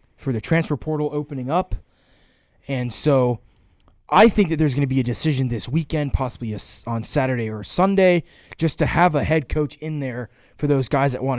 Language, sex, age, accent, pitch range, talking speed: English, male, 20-39, American, 125-160 Hz, 195 wpm